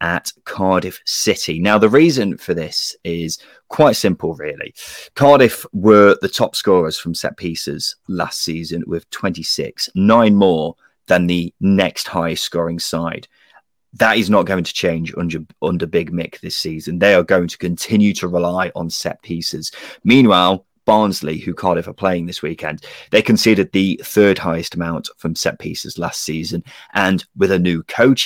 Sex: male